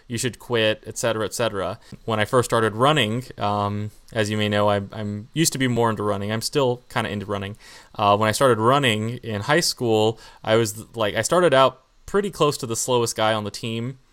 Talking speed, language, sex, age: 230 wpm, English, male, 20-39